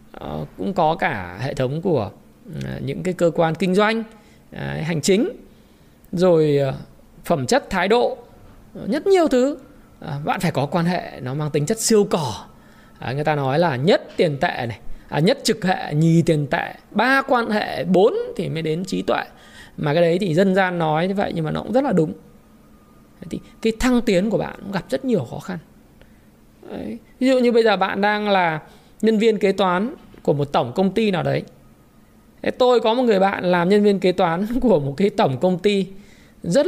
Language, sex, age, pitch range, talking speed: Vietnamese, male, 20-39, 180-255 Hz, 210 wpm